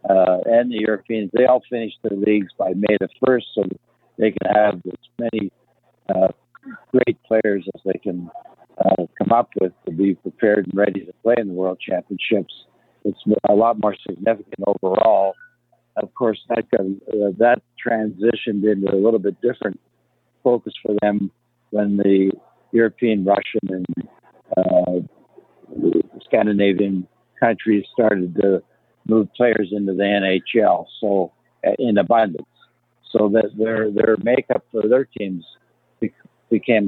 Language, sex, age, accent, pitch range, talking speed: English, male, 60-79, American, 95-115 Hz, 140 wpm